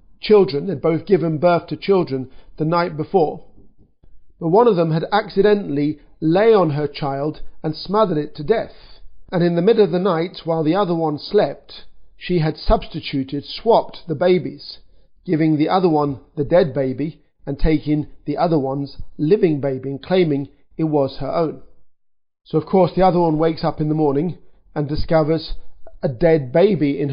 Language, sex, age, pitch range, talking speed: English, male, 40-59, 145-180 Hz, 175 wpm